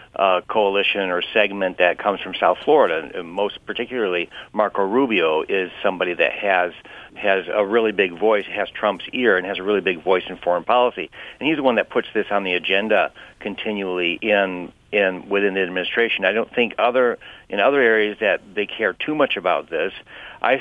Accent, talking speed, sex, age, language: American, 200 wpm, male, 60-79, English